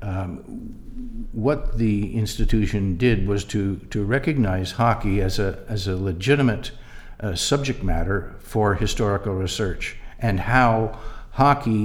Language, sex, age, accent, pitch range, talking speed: English, male, 60-79, American, 95-115 Hz, 120 wpm